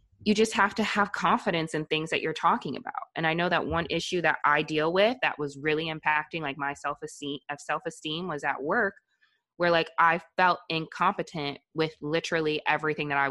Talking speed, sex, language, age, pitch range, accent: 200 wpm, female, English, 20-39, 140-165 Hz, American